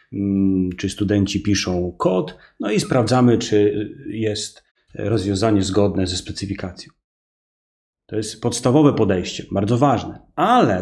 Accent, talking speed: native, 110 wpm